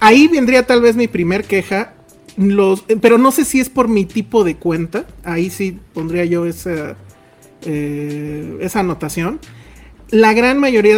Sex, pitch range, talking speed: male, 170-215 Hz, 155 wpm